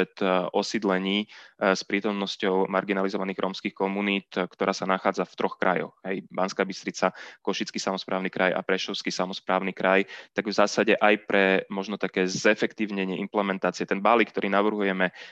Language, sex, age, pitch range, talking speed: Slovak, male, 20-39, 95-100 Hz, 135 wpm